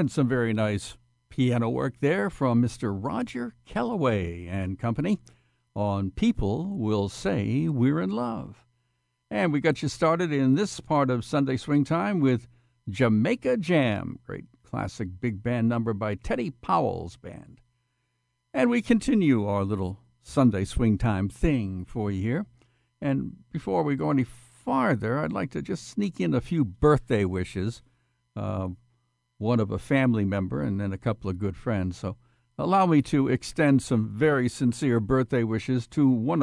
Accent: American